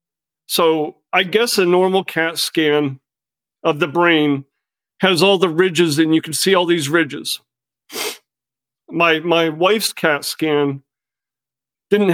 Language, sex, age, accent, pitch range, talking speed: English, male, 40-59, American, 145-175 Hz, 135 wpm